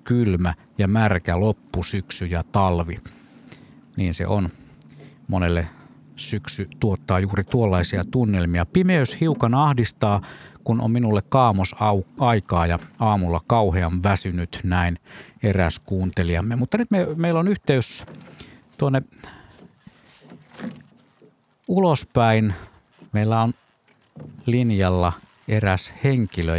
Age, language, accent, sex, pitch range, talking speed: 50-69, Finnish, native, male, 90-120 Hz, 95 wpm